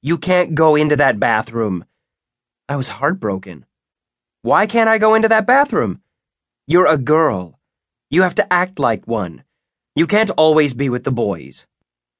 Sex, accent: male, American